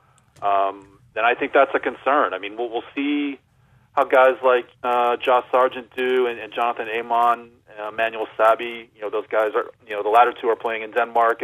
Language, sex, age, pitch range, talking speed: English, male, 40-59, 110-130 Hz, 210 wpm